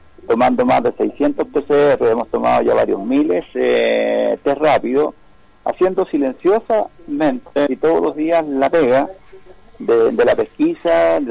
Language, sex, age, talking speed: Spanish, male, 50-69, 140 wpm